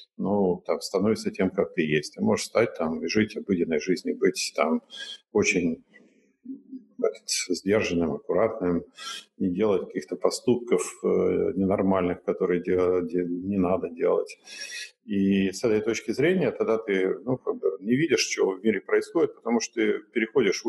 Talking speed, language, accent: 145 wpm, Russian, native